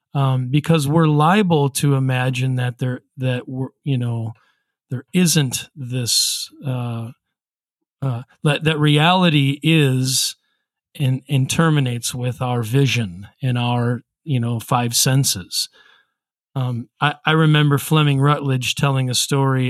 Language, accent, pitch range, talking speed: English, American, 125-145 Hz, 130 wpm